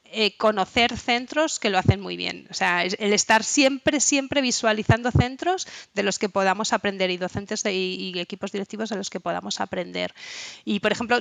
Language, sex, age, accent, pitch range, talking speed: Spanish, female, 20-39, Spanish, 185-230 Hz, 195 wpm